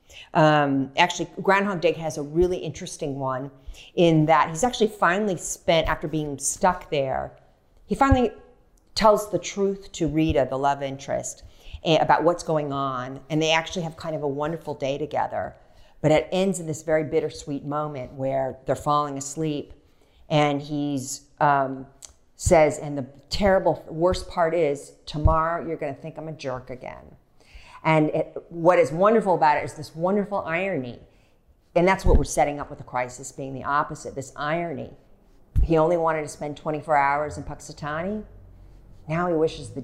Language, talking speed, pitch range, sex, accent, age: English, 165 wpm, 135-170 Hz, female, American, 50-69